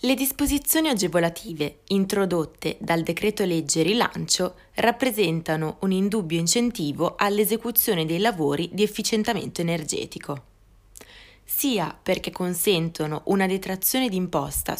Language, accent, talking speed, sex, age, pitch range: Italian, native, 95 wpm, female, 20-39, 160-210 Hz